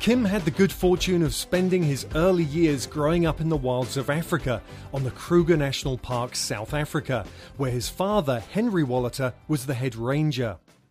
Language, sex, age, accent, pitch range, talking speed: English, male, 30-49, British, 125-160 Hz, 180 wpm